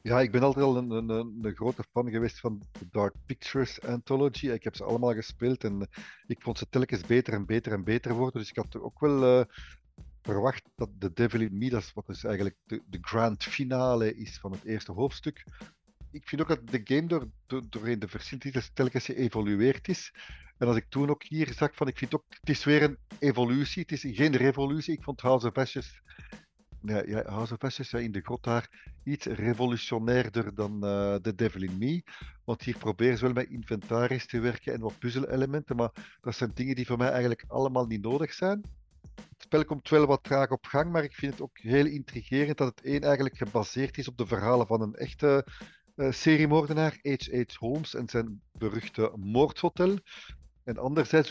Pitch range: 115-140 Hz